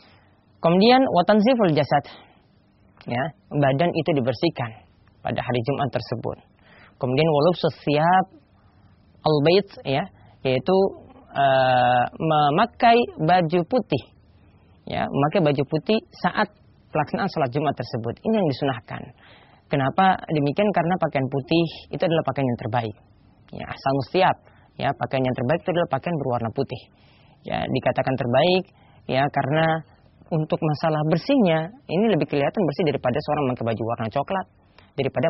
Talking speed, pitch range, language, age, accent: 125 wpm, 120-170 Hz, English, 20-39, Indonesian